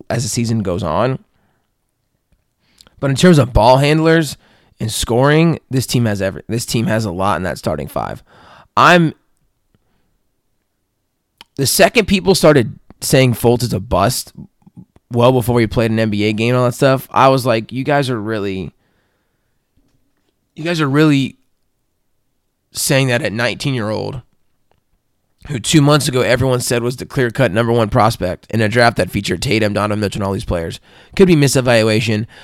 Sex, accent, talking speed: male, American, 170 wpm